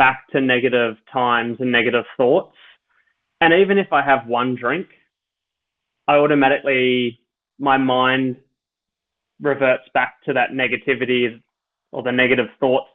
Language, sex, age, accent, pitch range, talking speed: English, male, 20-39, Australian, 125-140 Hz, 125 wpm